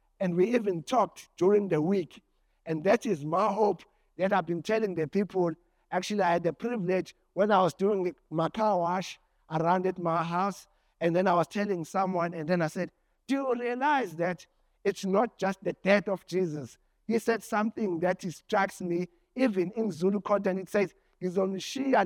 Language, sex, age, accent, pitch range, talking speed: English, male, 60-79, South African, 170-210 Hz, 190 wpm